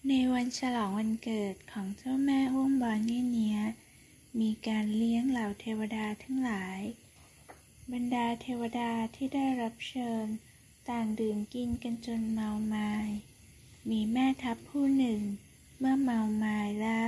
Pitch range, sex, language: 215-245 Hz, female, Thai